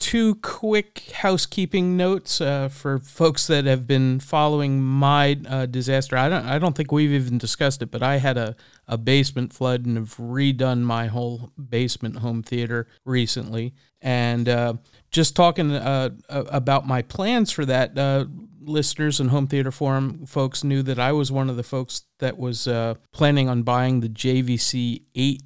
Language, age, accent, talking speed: English, 40-59, American, 170 wpm